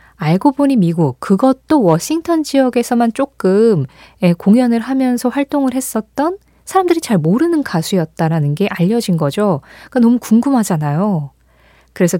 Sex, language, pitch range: female, Korean, 165-230 Hz